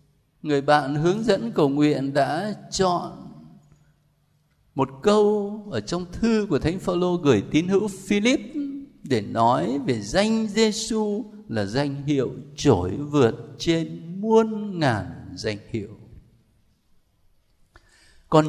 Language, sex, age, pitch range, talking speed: Vietnamese, male, 60-79, 140-195 Hz, 115 wpm